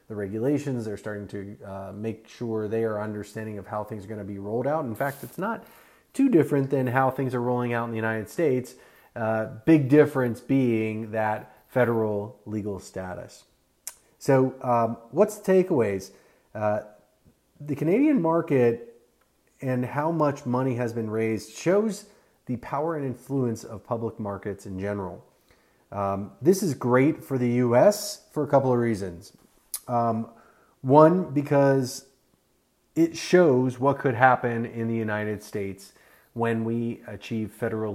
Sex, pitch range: male, 105-130 Hz